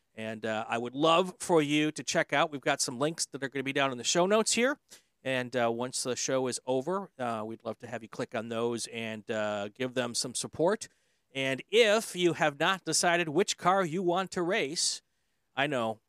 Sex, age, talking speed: male, 40-59, 230 wpm